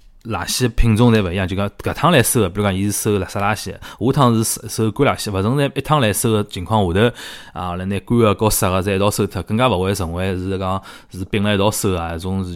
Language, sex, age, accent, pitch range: Chinese, male, 20-39, native, 95-120 Hz